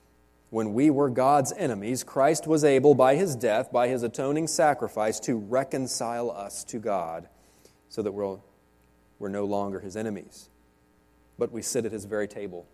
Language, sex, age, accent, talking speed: English, male, 30-49, American, 165 wpm